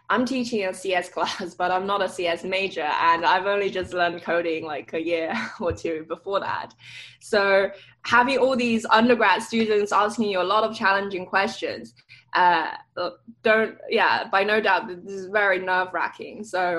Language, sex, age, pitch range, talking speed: English, female, 20-39, 170-210 Hz, 175 wpm